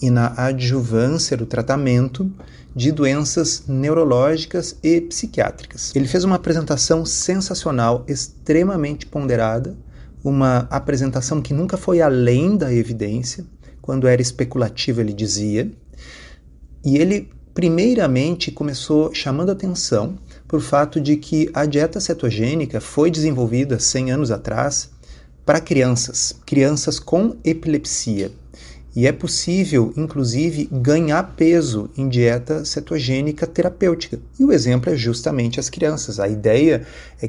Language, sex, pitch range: Portuguese, male, 125-160 Hz